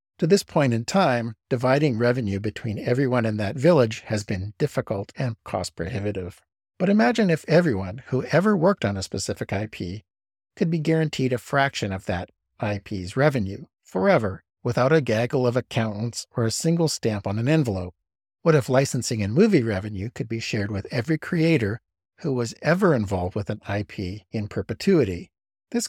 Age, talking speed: 60-79, 170 wpm